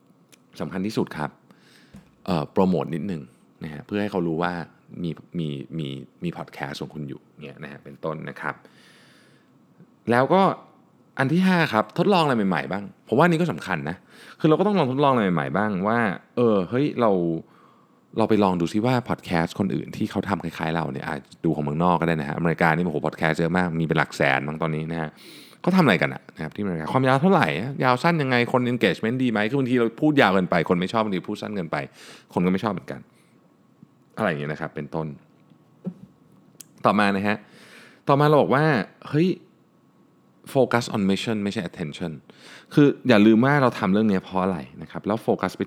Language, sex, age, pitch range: Thai, male, 20-39, 80-125 Hz